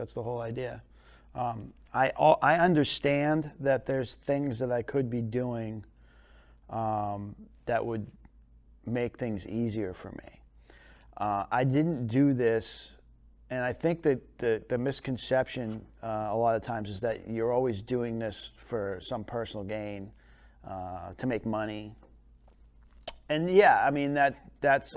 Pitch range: 105-140 Hz